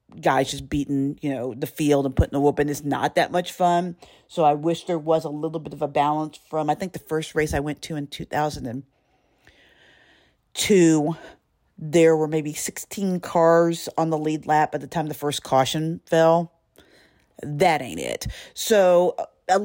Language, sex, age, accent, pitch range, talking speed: English, female, 40-59, American, 150-185 Hz, 180 wpm